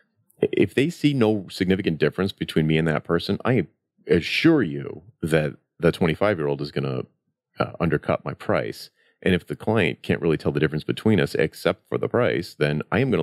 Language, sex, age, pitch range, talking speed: English, male, 40-59, 75-95 Hz, 190 wpm